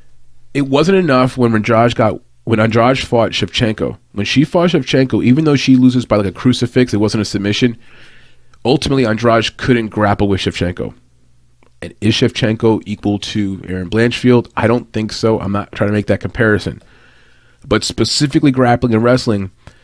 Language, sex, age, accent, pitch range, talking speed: English, male, 30-49, American, 100-120 Hz, 165 wpm